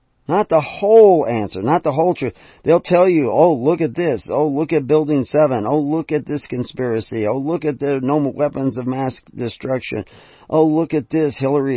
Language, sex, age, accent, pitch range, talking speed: English, male, 40-59, American, 120-155 Hz, 200 wpm